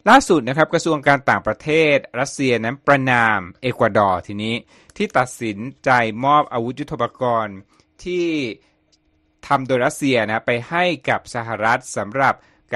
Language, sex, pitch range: Thai, male, 110-145 Hz